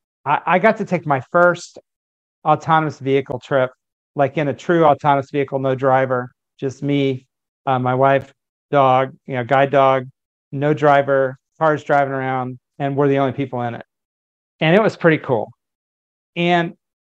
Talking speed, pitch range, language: 160 wpm, 130-160 Hz, English